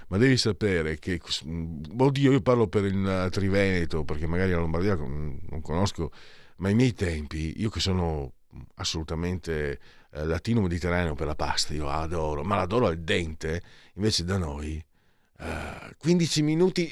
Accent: native